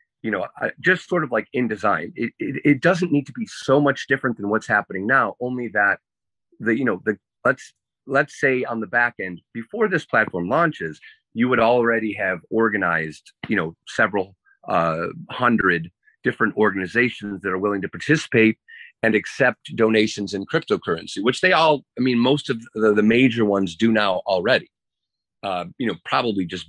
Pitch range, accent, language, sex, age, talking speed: 100-135 Hz, American, English, male, 30-49, 180 wpm